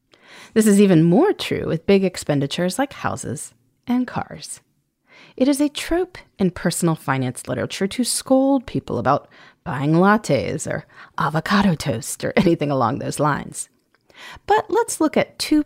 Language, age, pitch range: English, 30-49, 160-270 Hz